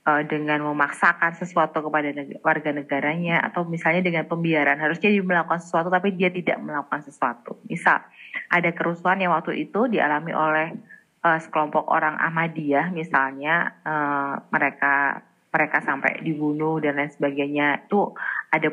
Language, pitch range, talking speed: Indonesian, 150-185 Hz, 135 wpm